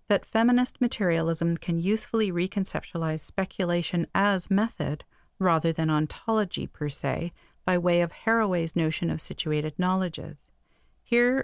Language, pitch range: English, 165-205 Hz